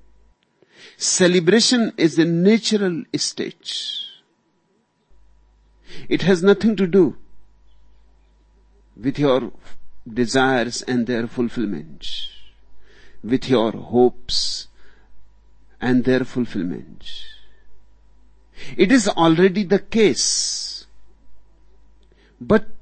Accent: native